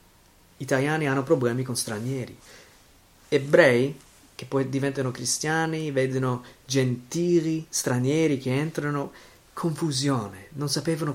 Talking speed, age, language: 95 wpm, 30-49, Italian